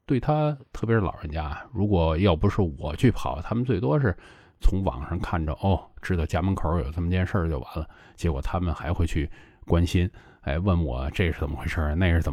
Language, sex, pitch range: Chinese, male, 75-95 Hz